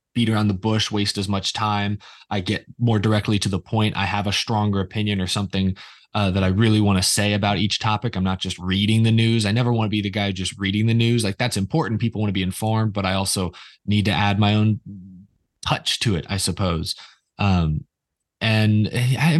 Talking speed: 225 wpm